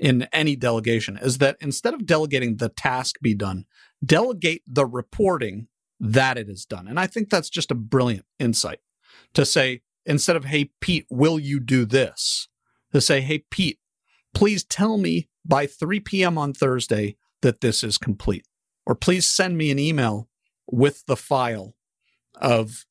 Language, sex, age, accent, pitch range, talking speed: English, male, 50-69, American, 120-175 Hz, 165 wpm